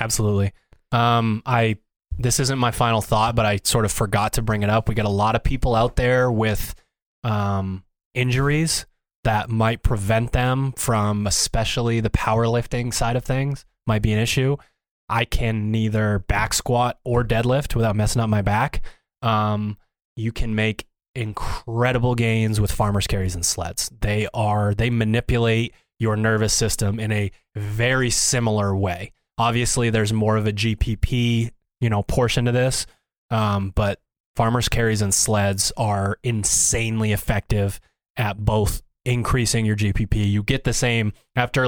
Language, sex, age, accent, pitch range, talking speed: English, male, 20-39, American, 105-120 Hz, 155 wpm